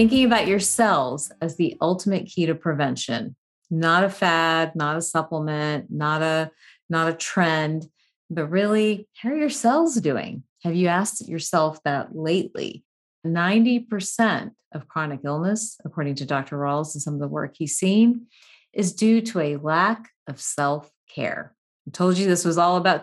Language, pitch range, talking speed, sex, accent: English, 155-215 Hz, 165 wpm, female, American